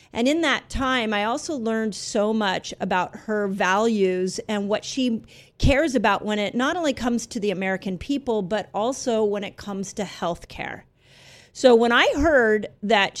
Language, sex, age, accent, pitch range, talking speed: English, female, 40-59, American, 200-250 Hz, 175 wpm